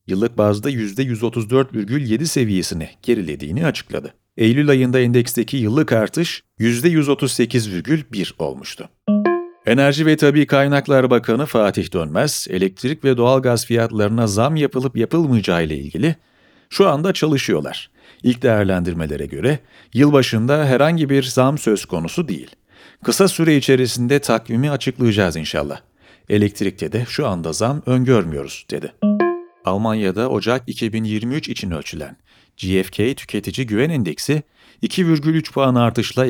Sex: male